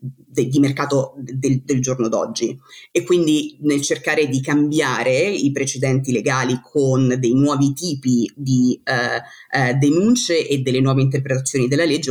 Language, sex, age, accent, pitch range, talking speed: Italian, female, 30-49, native, 125-145 Hz, 145 wpm